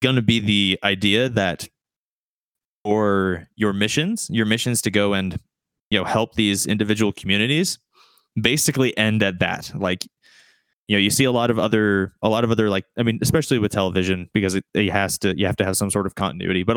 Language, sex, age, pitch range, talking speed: English, male, 20-39, 100-120 Hz, 205 wpm